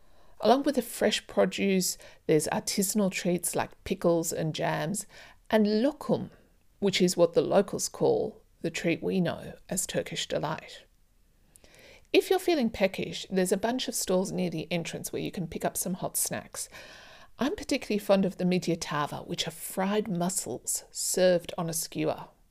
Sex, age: female, 50-69